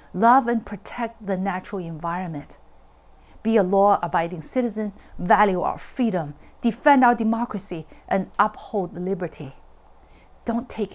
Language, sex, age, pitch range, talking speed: English, female, 50-69, 155-205 Hz, 115 wpm